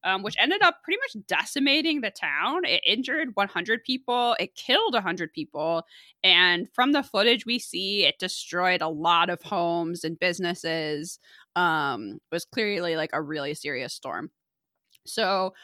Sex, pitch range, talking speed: female, 170-245 Hz, 155 wpm